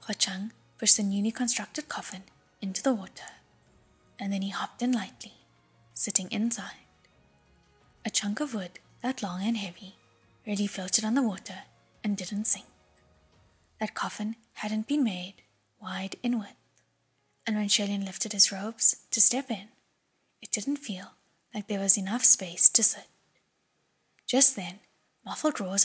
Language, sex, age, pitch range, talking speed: English, female, 10-29, 190-225 Hz, 150 wpm